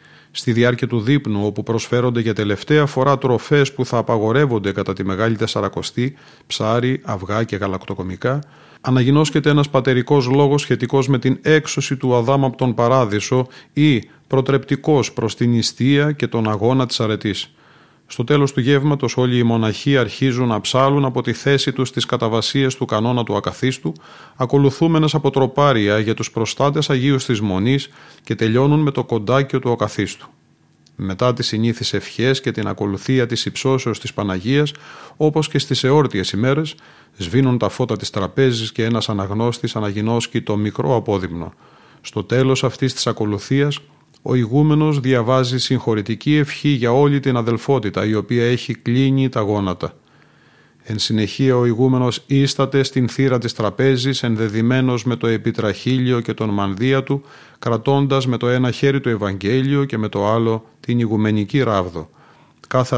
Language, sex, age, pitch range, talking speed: Greek, male, 30-49, 110-135 Hz, 150 wpm